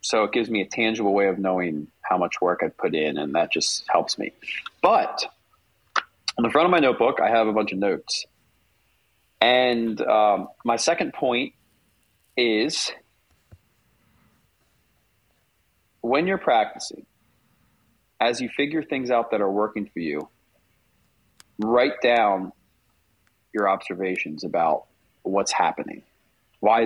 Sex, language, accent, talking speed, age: male, English, American, 135 wpm, 30-49